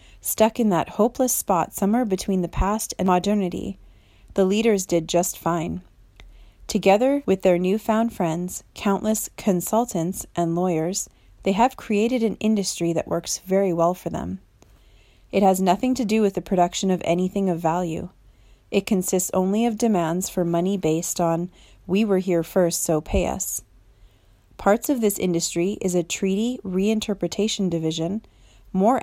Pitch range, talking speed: 165-205 Hz, 155 wpm